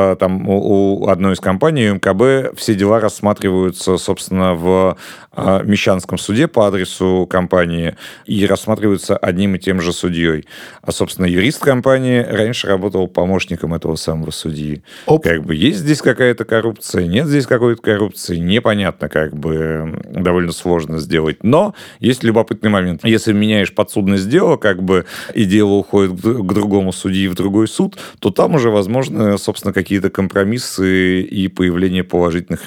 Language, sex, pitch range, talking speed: Russian, male, 90-105 Hz, 145 wpm